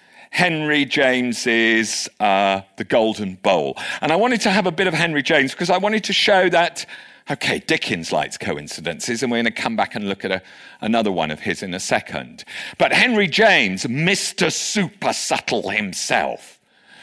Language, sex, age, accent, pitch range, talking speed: English, male, 50-69, British, 110-170 Hz, 170 wpm